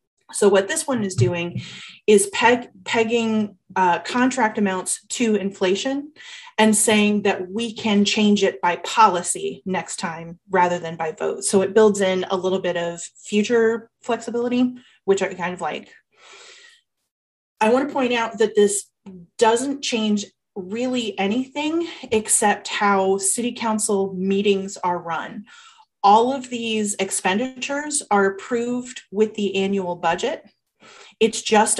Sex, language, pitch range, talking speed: female, English, 190-235 Hz, 140 wpm